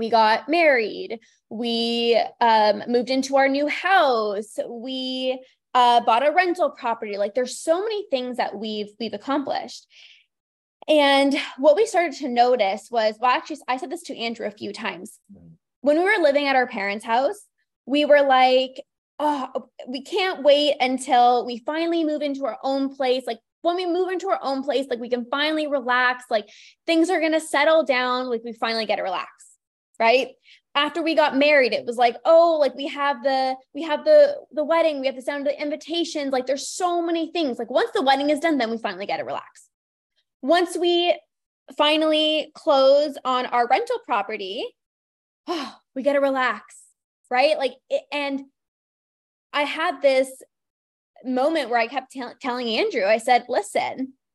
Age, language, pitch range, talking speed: 20-39, English, 250-310 Hz, 180 wpm